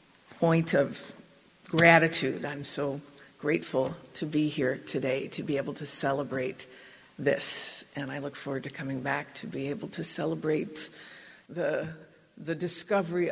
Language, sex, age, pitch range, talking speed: English, female, 50-69, 155-180 Hz, 140 wpm